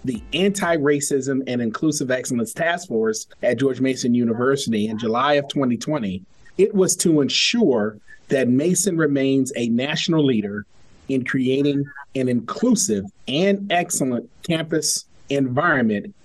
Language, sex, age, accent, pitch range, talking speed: English, male, 40-59, American, 130-175 Hz, 120 wpm